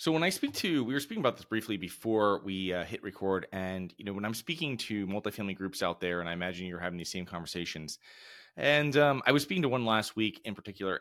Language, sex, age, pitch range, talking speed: English, male, 30-49, 95-115 Hz, 250 wpm